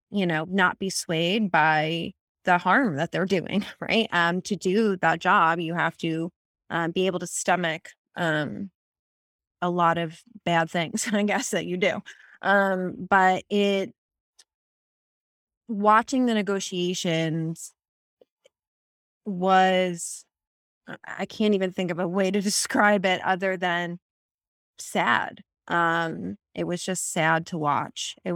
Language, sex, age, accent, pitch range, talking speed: English, female, 20-39, American, 165-200 Hz, 140 wpm